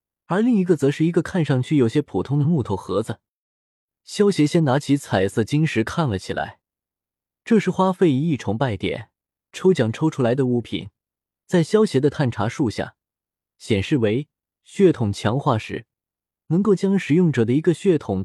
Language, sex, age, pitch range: Chinese, male, 20-39, 110-170 Hz